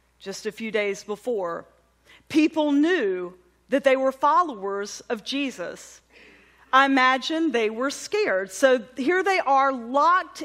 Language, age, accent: English, 40-59, American